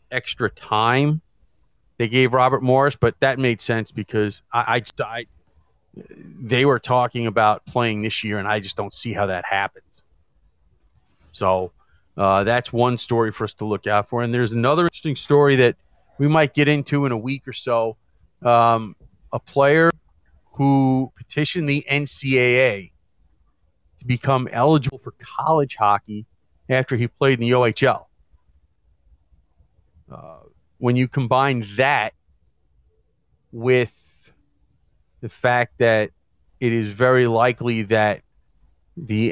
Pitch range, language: 90-125 Hz, English